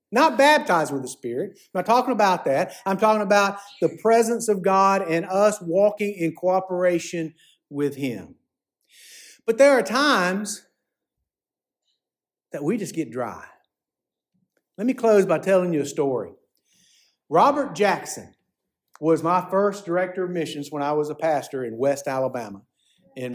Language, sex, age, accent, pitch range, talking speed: English, male, 50-69, American, 155-220 Hz, 150 wpm